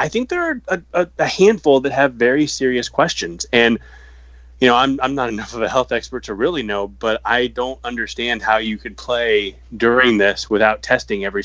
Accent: American